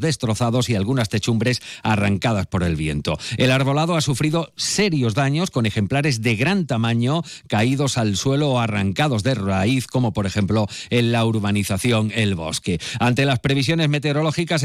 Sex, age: male, 40-59